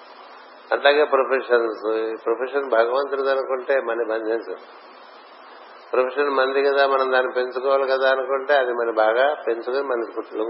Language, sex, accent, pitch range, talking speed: Telugu, male, native, 115-135 Hz, 125 wpm